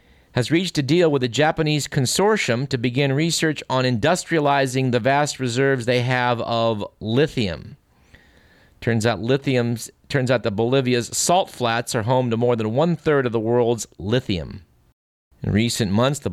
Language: English